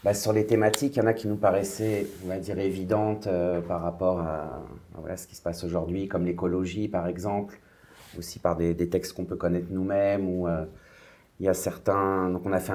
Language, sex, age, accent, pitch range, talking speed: French, male, 30-49, French, 90-100 Hz, 225 wpm